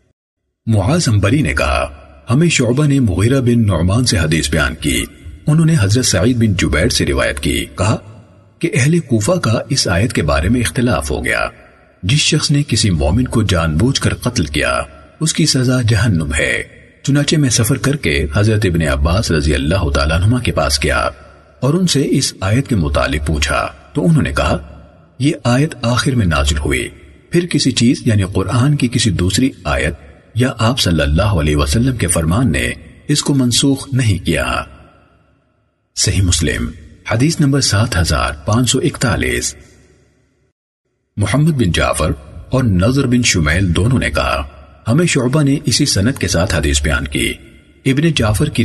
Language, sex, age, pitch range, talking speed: Urdu, male, 40-59, 80-130 Hz, 165 wpm